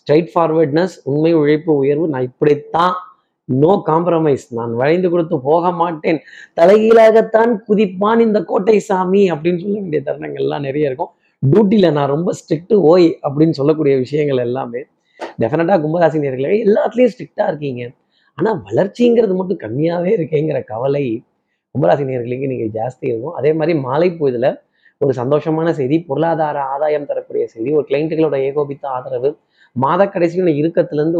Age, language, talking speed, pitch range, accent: 30-49, Tamil, 130 wpm, 140-175 Hz, native